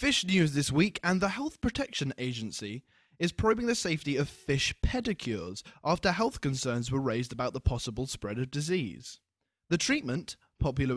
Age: 20-39